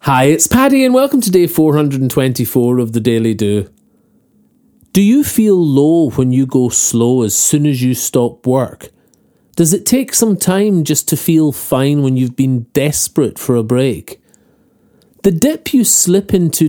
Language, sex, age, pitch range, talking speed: English, male, 30-49, 125-185 Hz, 170 wpm